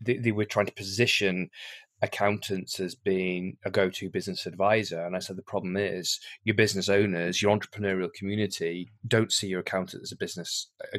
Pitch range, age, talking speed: 100-120 Hz, 30-49, 175 wpm